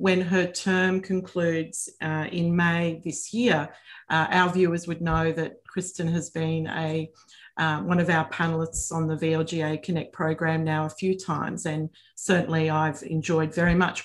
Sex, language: female, English